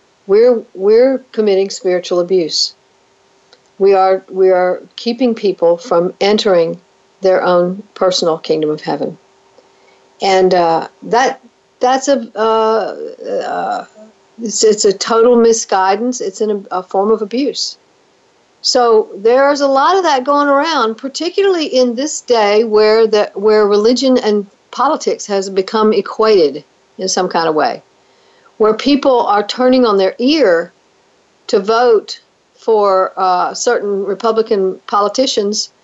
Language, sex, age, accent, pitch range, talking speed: English, female, 60-79, American, 190-250 Hz, 130 wpm